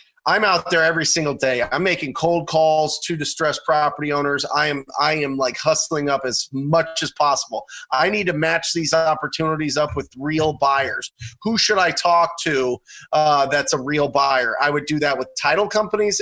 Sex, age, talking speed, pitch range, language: male, 30-49, 190 wpm, 140-165 Hz, English